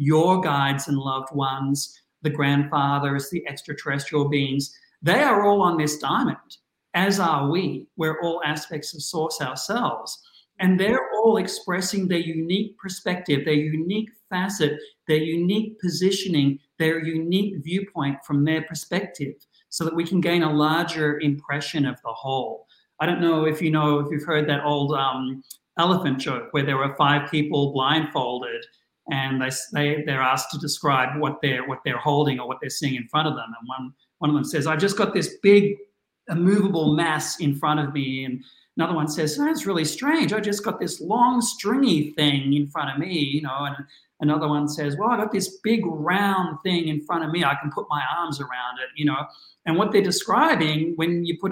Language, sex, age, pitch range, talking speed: English, male, 50-69, 145-180 Hz, 190 wpm